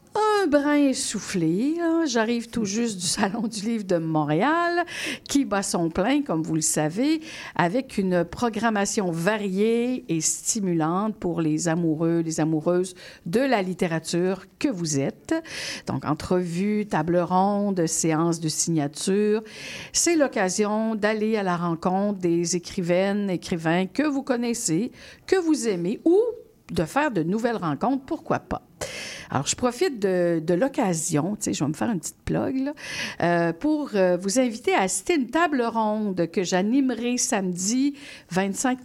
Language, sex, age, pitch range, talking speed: French, female, 50-69, 170-265 Hz, 155 wpm